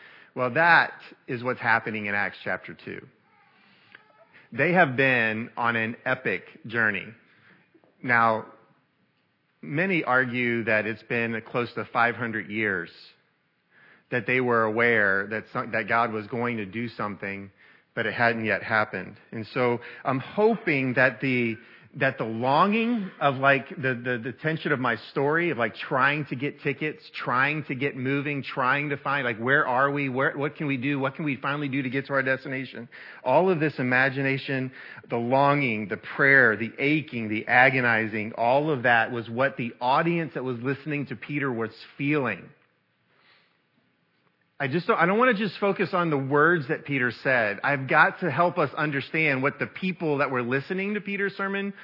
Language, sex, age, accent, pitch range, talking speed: English, male, 40-59, American, 120-160 Hz, 170 wpm